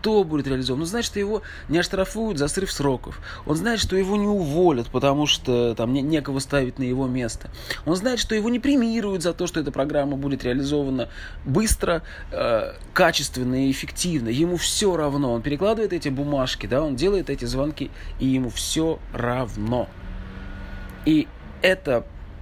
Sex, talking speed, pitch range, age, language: male, 165 wpm, 115-160 Hz, 20-39, Russian